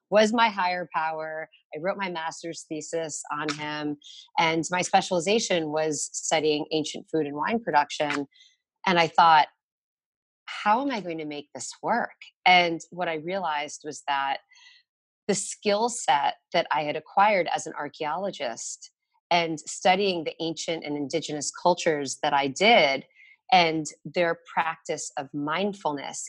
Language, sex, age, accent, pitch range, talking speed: English, female, 30-49, American, 150-190 Hz, 145 wpm